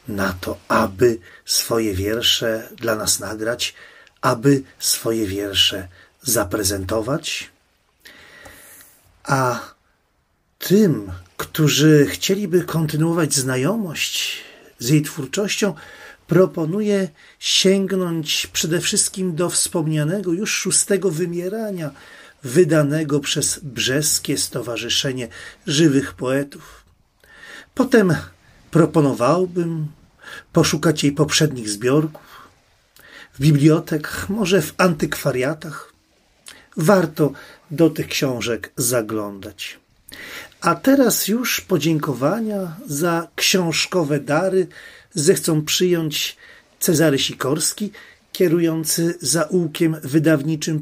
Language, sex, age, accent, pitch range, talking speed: Polish, male, 40-59, native, 140-175 Hz, 80 wpm